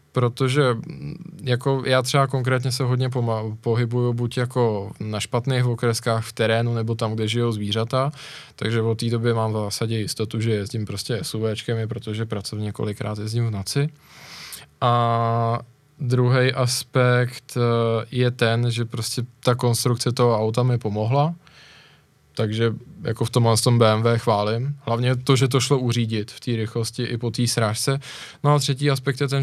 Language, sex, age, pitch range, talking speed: Czech, male, 20-39, 115-130 Hz, 165 wpm